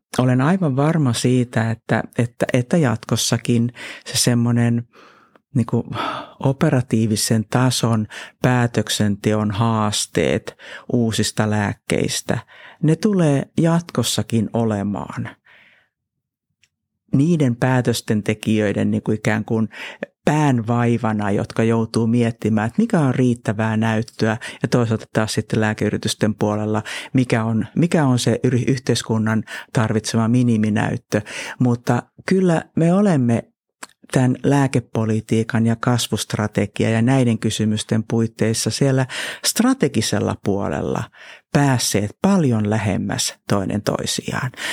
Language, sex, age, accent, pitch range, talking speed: Finnish, male, 50-69, native, 110-130 Hz, 95 wpm